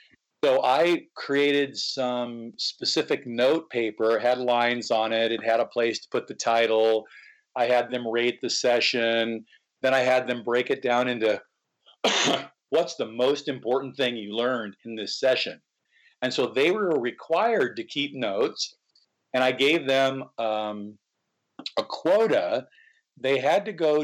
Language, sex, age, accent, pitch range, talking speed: English, male, 50-69, American, 115-150 Hz, 155 wpm